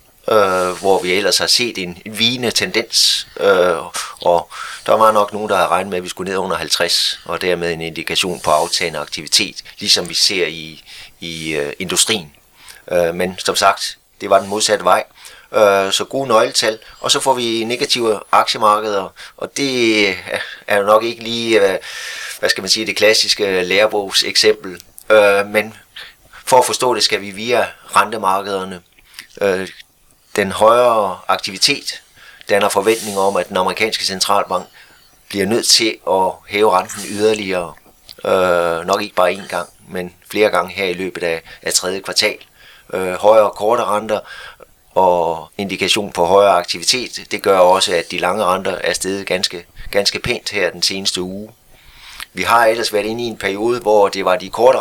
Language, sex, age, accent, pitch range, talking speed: Danish, male, 30-49, native, 90-110 Hz, 170 wpm